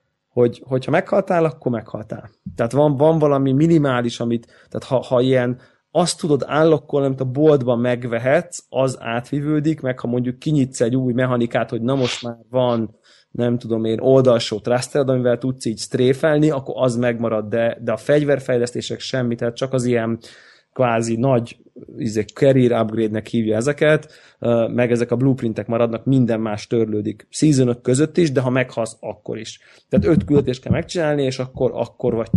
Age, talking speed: 20-39, 165 wpm